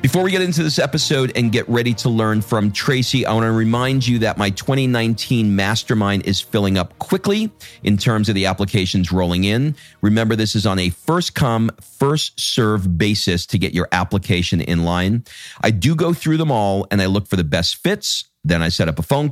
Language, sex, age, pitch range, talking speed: English, male, 40-59, 95-125 Hz, 205 wpm